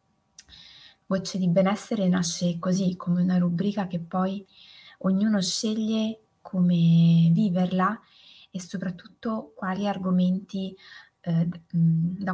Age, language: 20-39, Italian